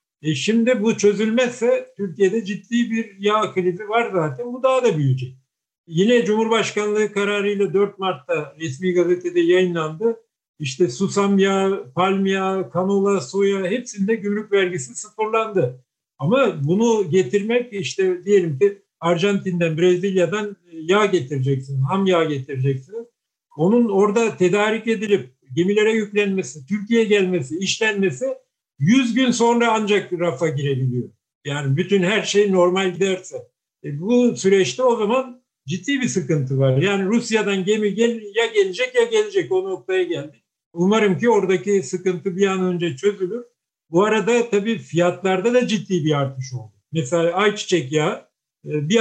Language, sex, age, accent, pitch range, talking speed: Turkish, male, 50-69, native, 170-225 Hz, 130 wpm